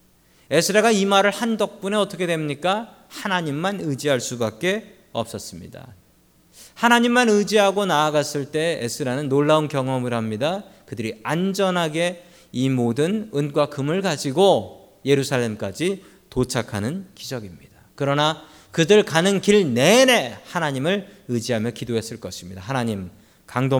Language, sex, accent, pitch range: Korean, male, native, 115-180 Hz